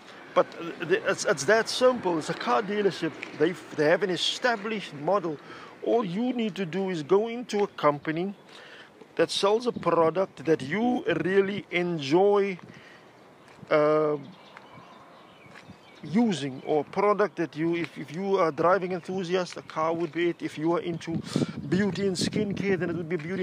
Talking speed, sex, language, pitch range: 160 wpm, male, English, 155-195 Hz